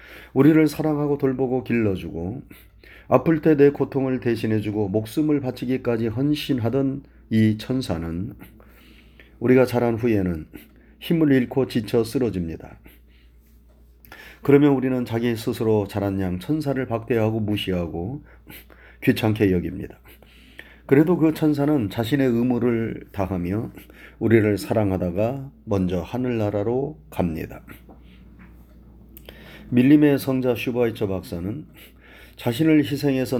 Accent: native